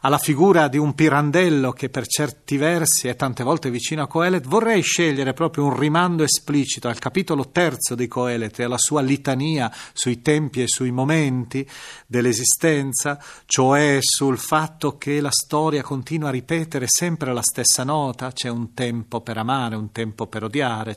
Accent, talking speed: native, 165 wpm